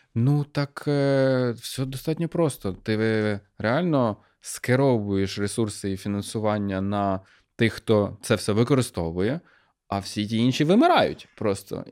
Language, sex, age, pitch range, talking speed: Ukrainian, male, 20-39, 95-125 Hz, 115 wpm